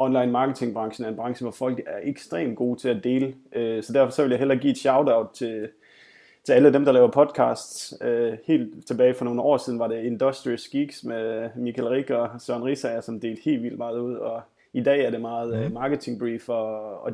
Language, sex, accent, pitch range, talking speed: Danish, male, native, 120-135 Hz, 215 wpm